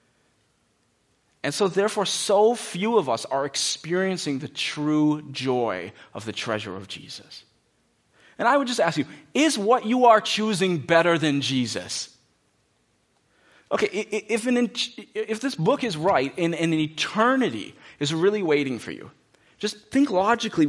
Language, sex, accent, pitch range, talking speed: English, male, American, 150-215 Hz, 145 wpm